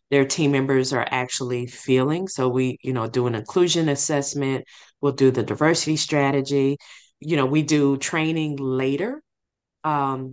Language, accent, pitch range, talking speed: English, American, 130-150 Hz, 150 wpm